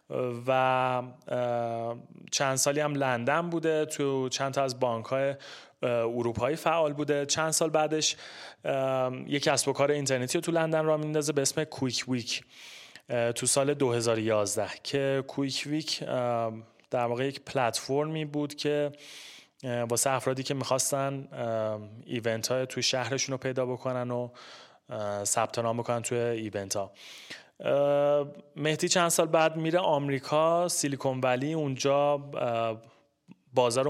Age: 30-49